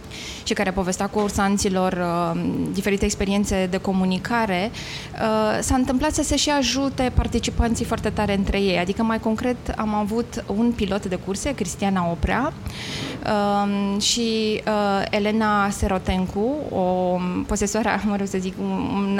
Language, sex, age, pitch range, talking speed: Romanian, female, 20-39, 190-225 Hz, 130 wpm